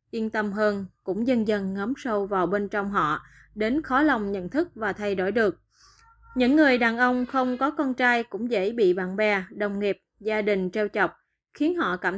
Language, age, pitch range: Vietnamese, 20-39, 200-250 Hz